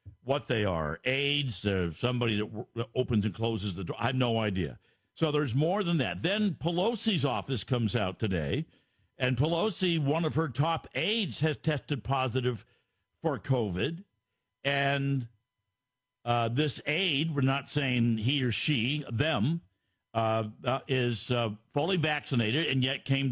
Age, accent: 60-79, American